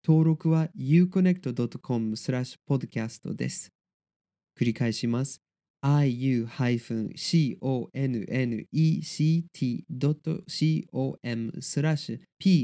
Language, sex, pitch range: Japanese, male, 125-170 Hz